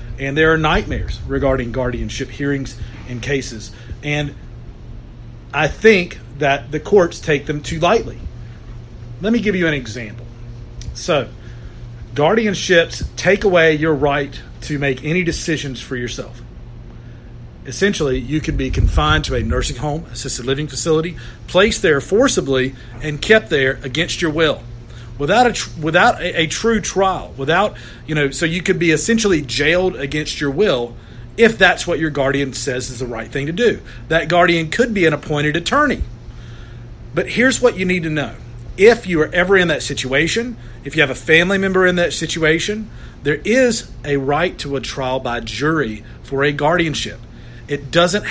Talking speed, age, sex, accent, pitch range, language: 165 wpm, 40-59, male, American, 120-170 Hz, English